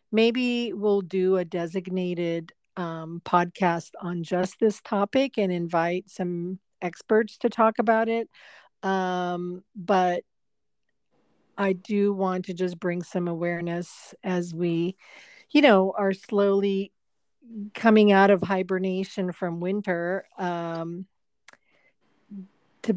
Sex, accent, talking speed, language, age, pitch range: female, American, 110 wpm, English, 50-69, 170-200 Hz